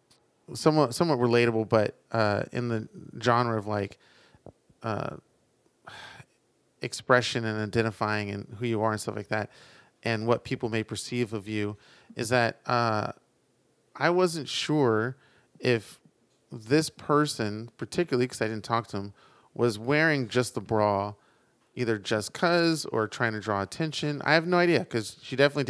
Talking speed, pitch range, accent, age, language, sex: 150 wpm, 110-135 Hz, American, 30-49, English, male